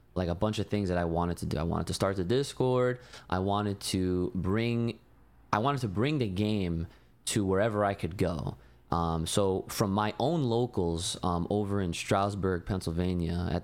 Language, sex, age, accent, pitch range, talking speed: English, male, 20-39, American, 90-115 Hz, 190 wpm